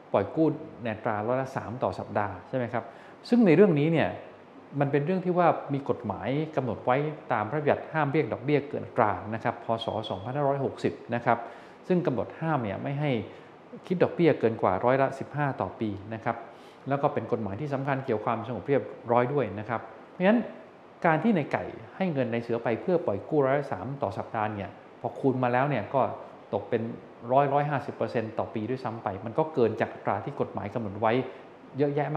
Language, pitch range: Thai, 110-145 Hz